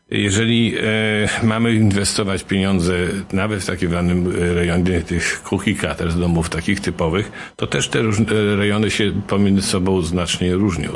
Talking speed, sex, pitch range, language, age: 150 wpm, male, 85-105 Hz, Polish, 50-69